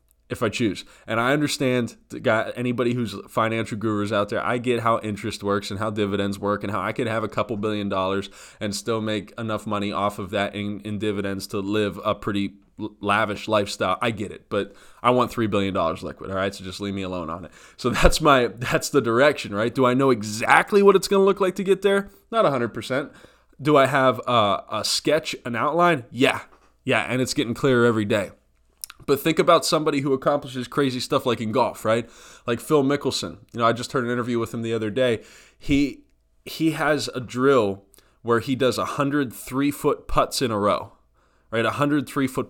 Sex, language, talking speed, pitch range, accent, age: male, English, 210 wpm, 105-135 Hz, American, 20-39